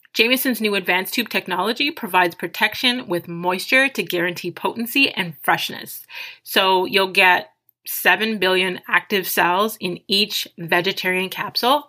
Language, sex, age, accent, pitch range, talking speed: English, female, 30-49, American, 185-230 Hz, 125 wpm